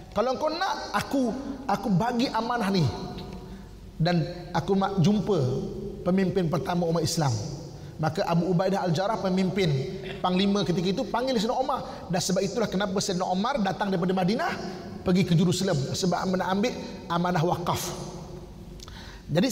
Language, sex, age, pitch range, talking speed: Malay, male, 30-49, 170-205 Hz, 140 wpm